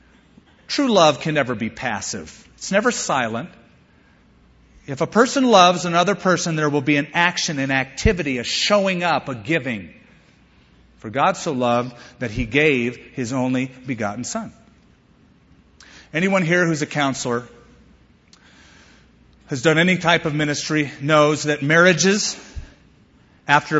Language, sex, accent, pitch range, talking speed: English, male, American, 125-180 Hz, 135 wpm